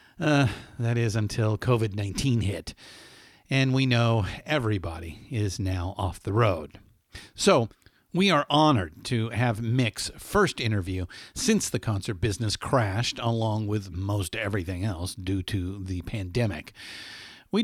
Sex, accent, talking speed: male, American, 135 wpm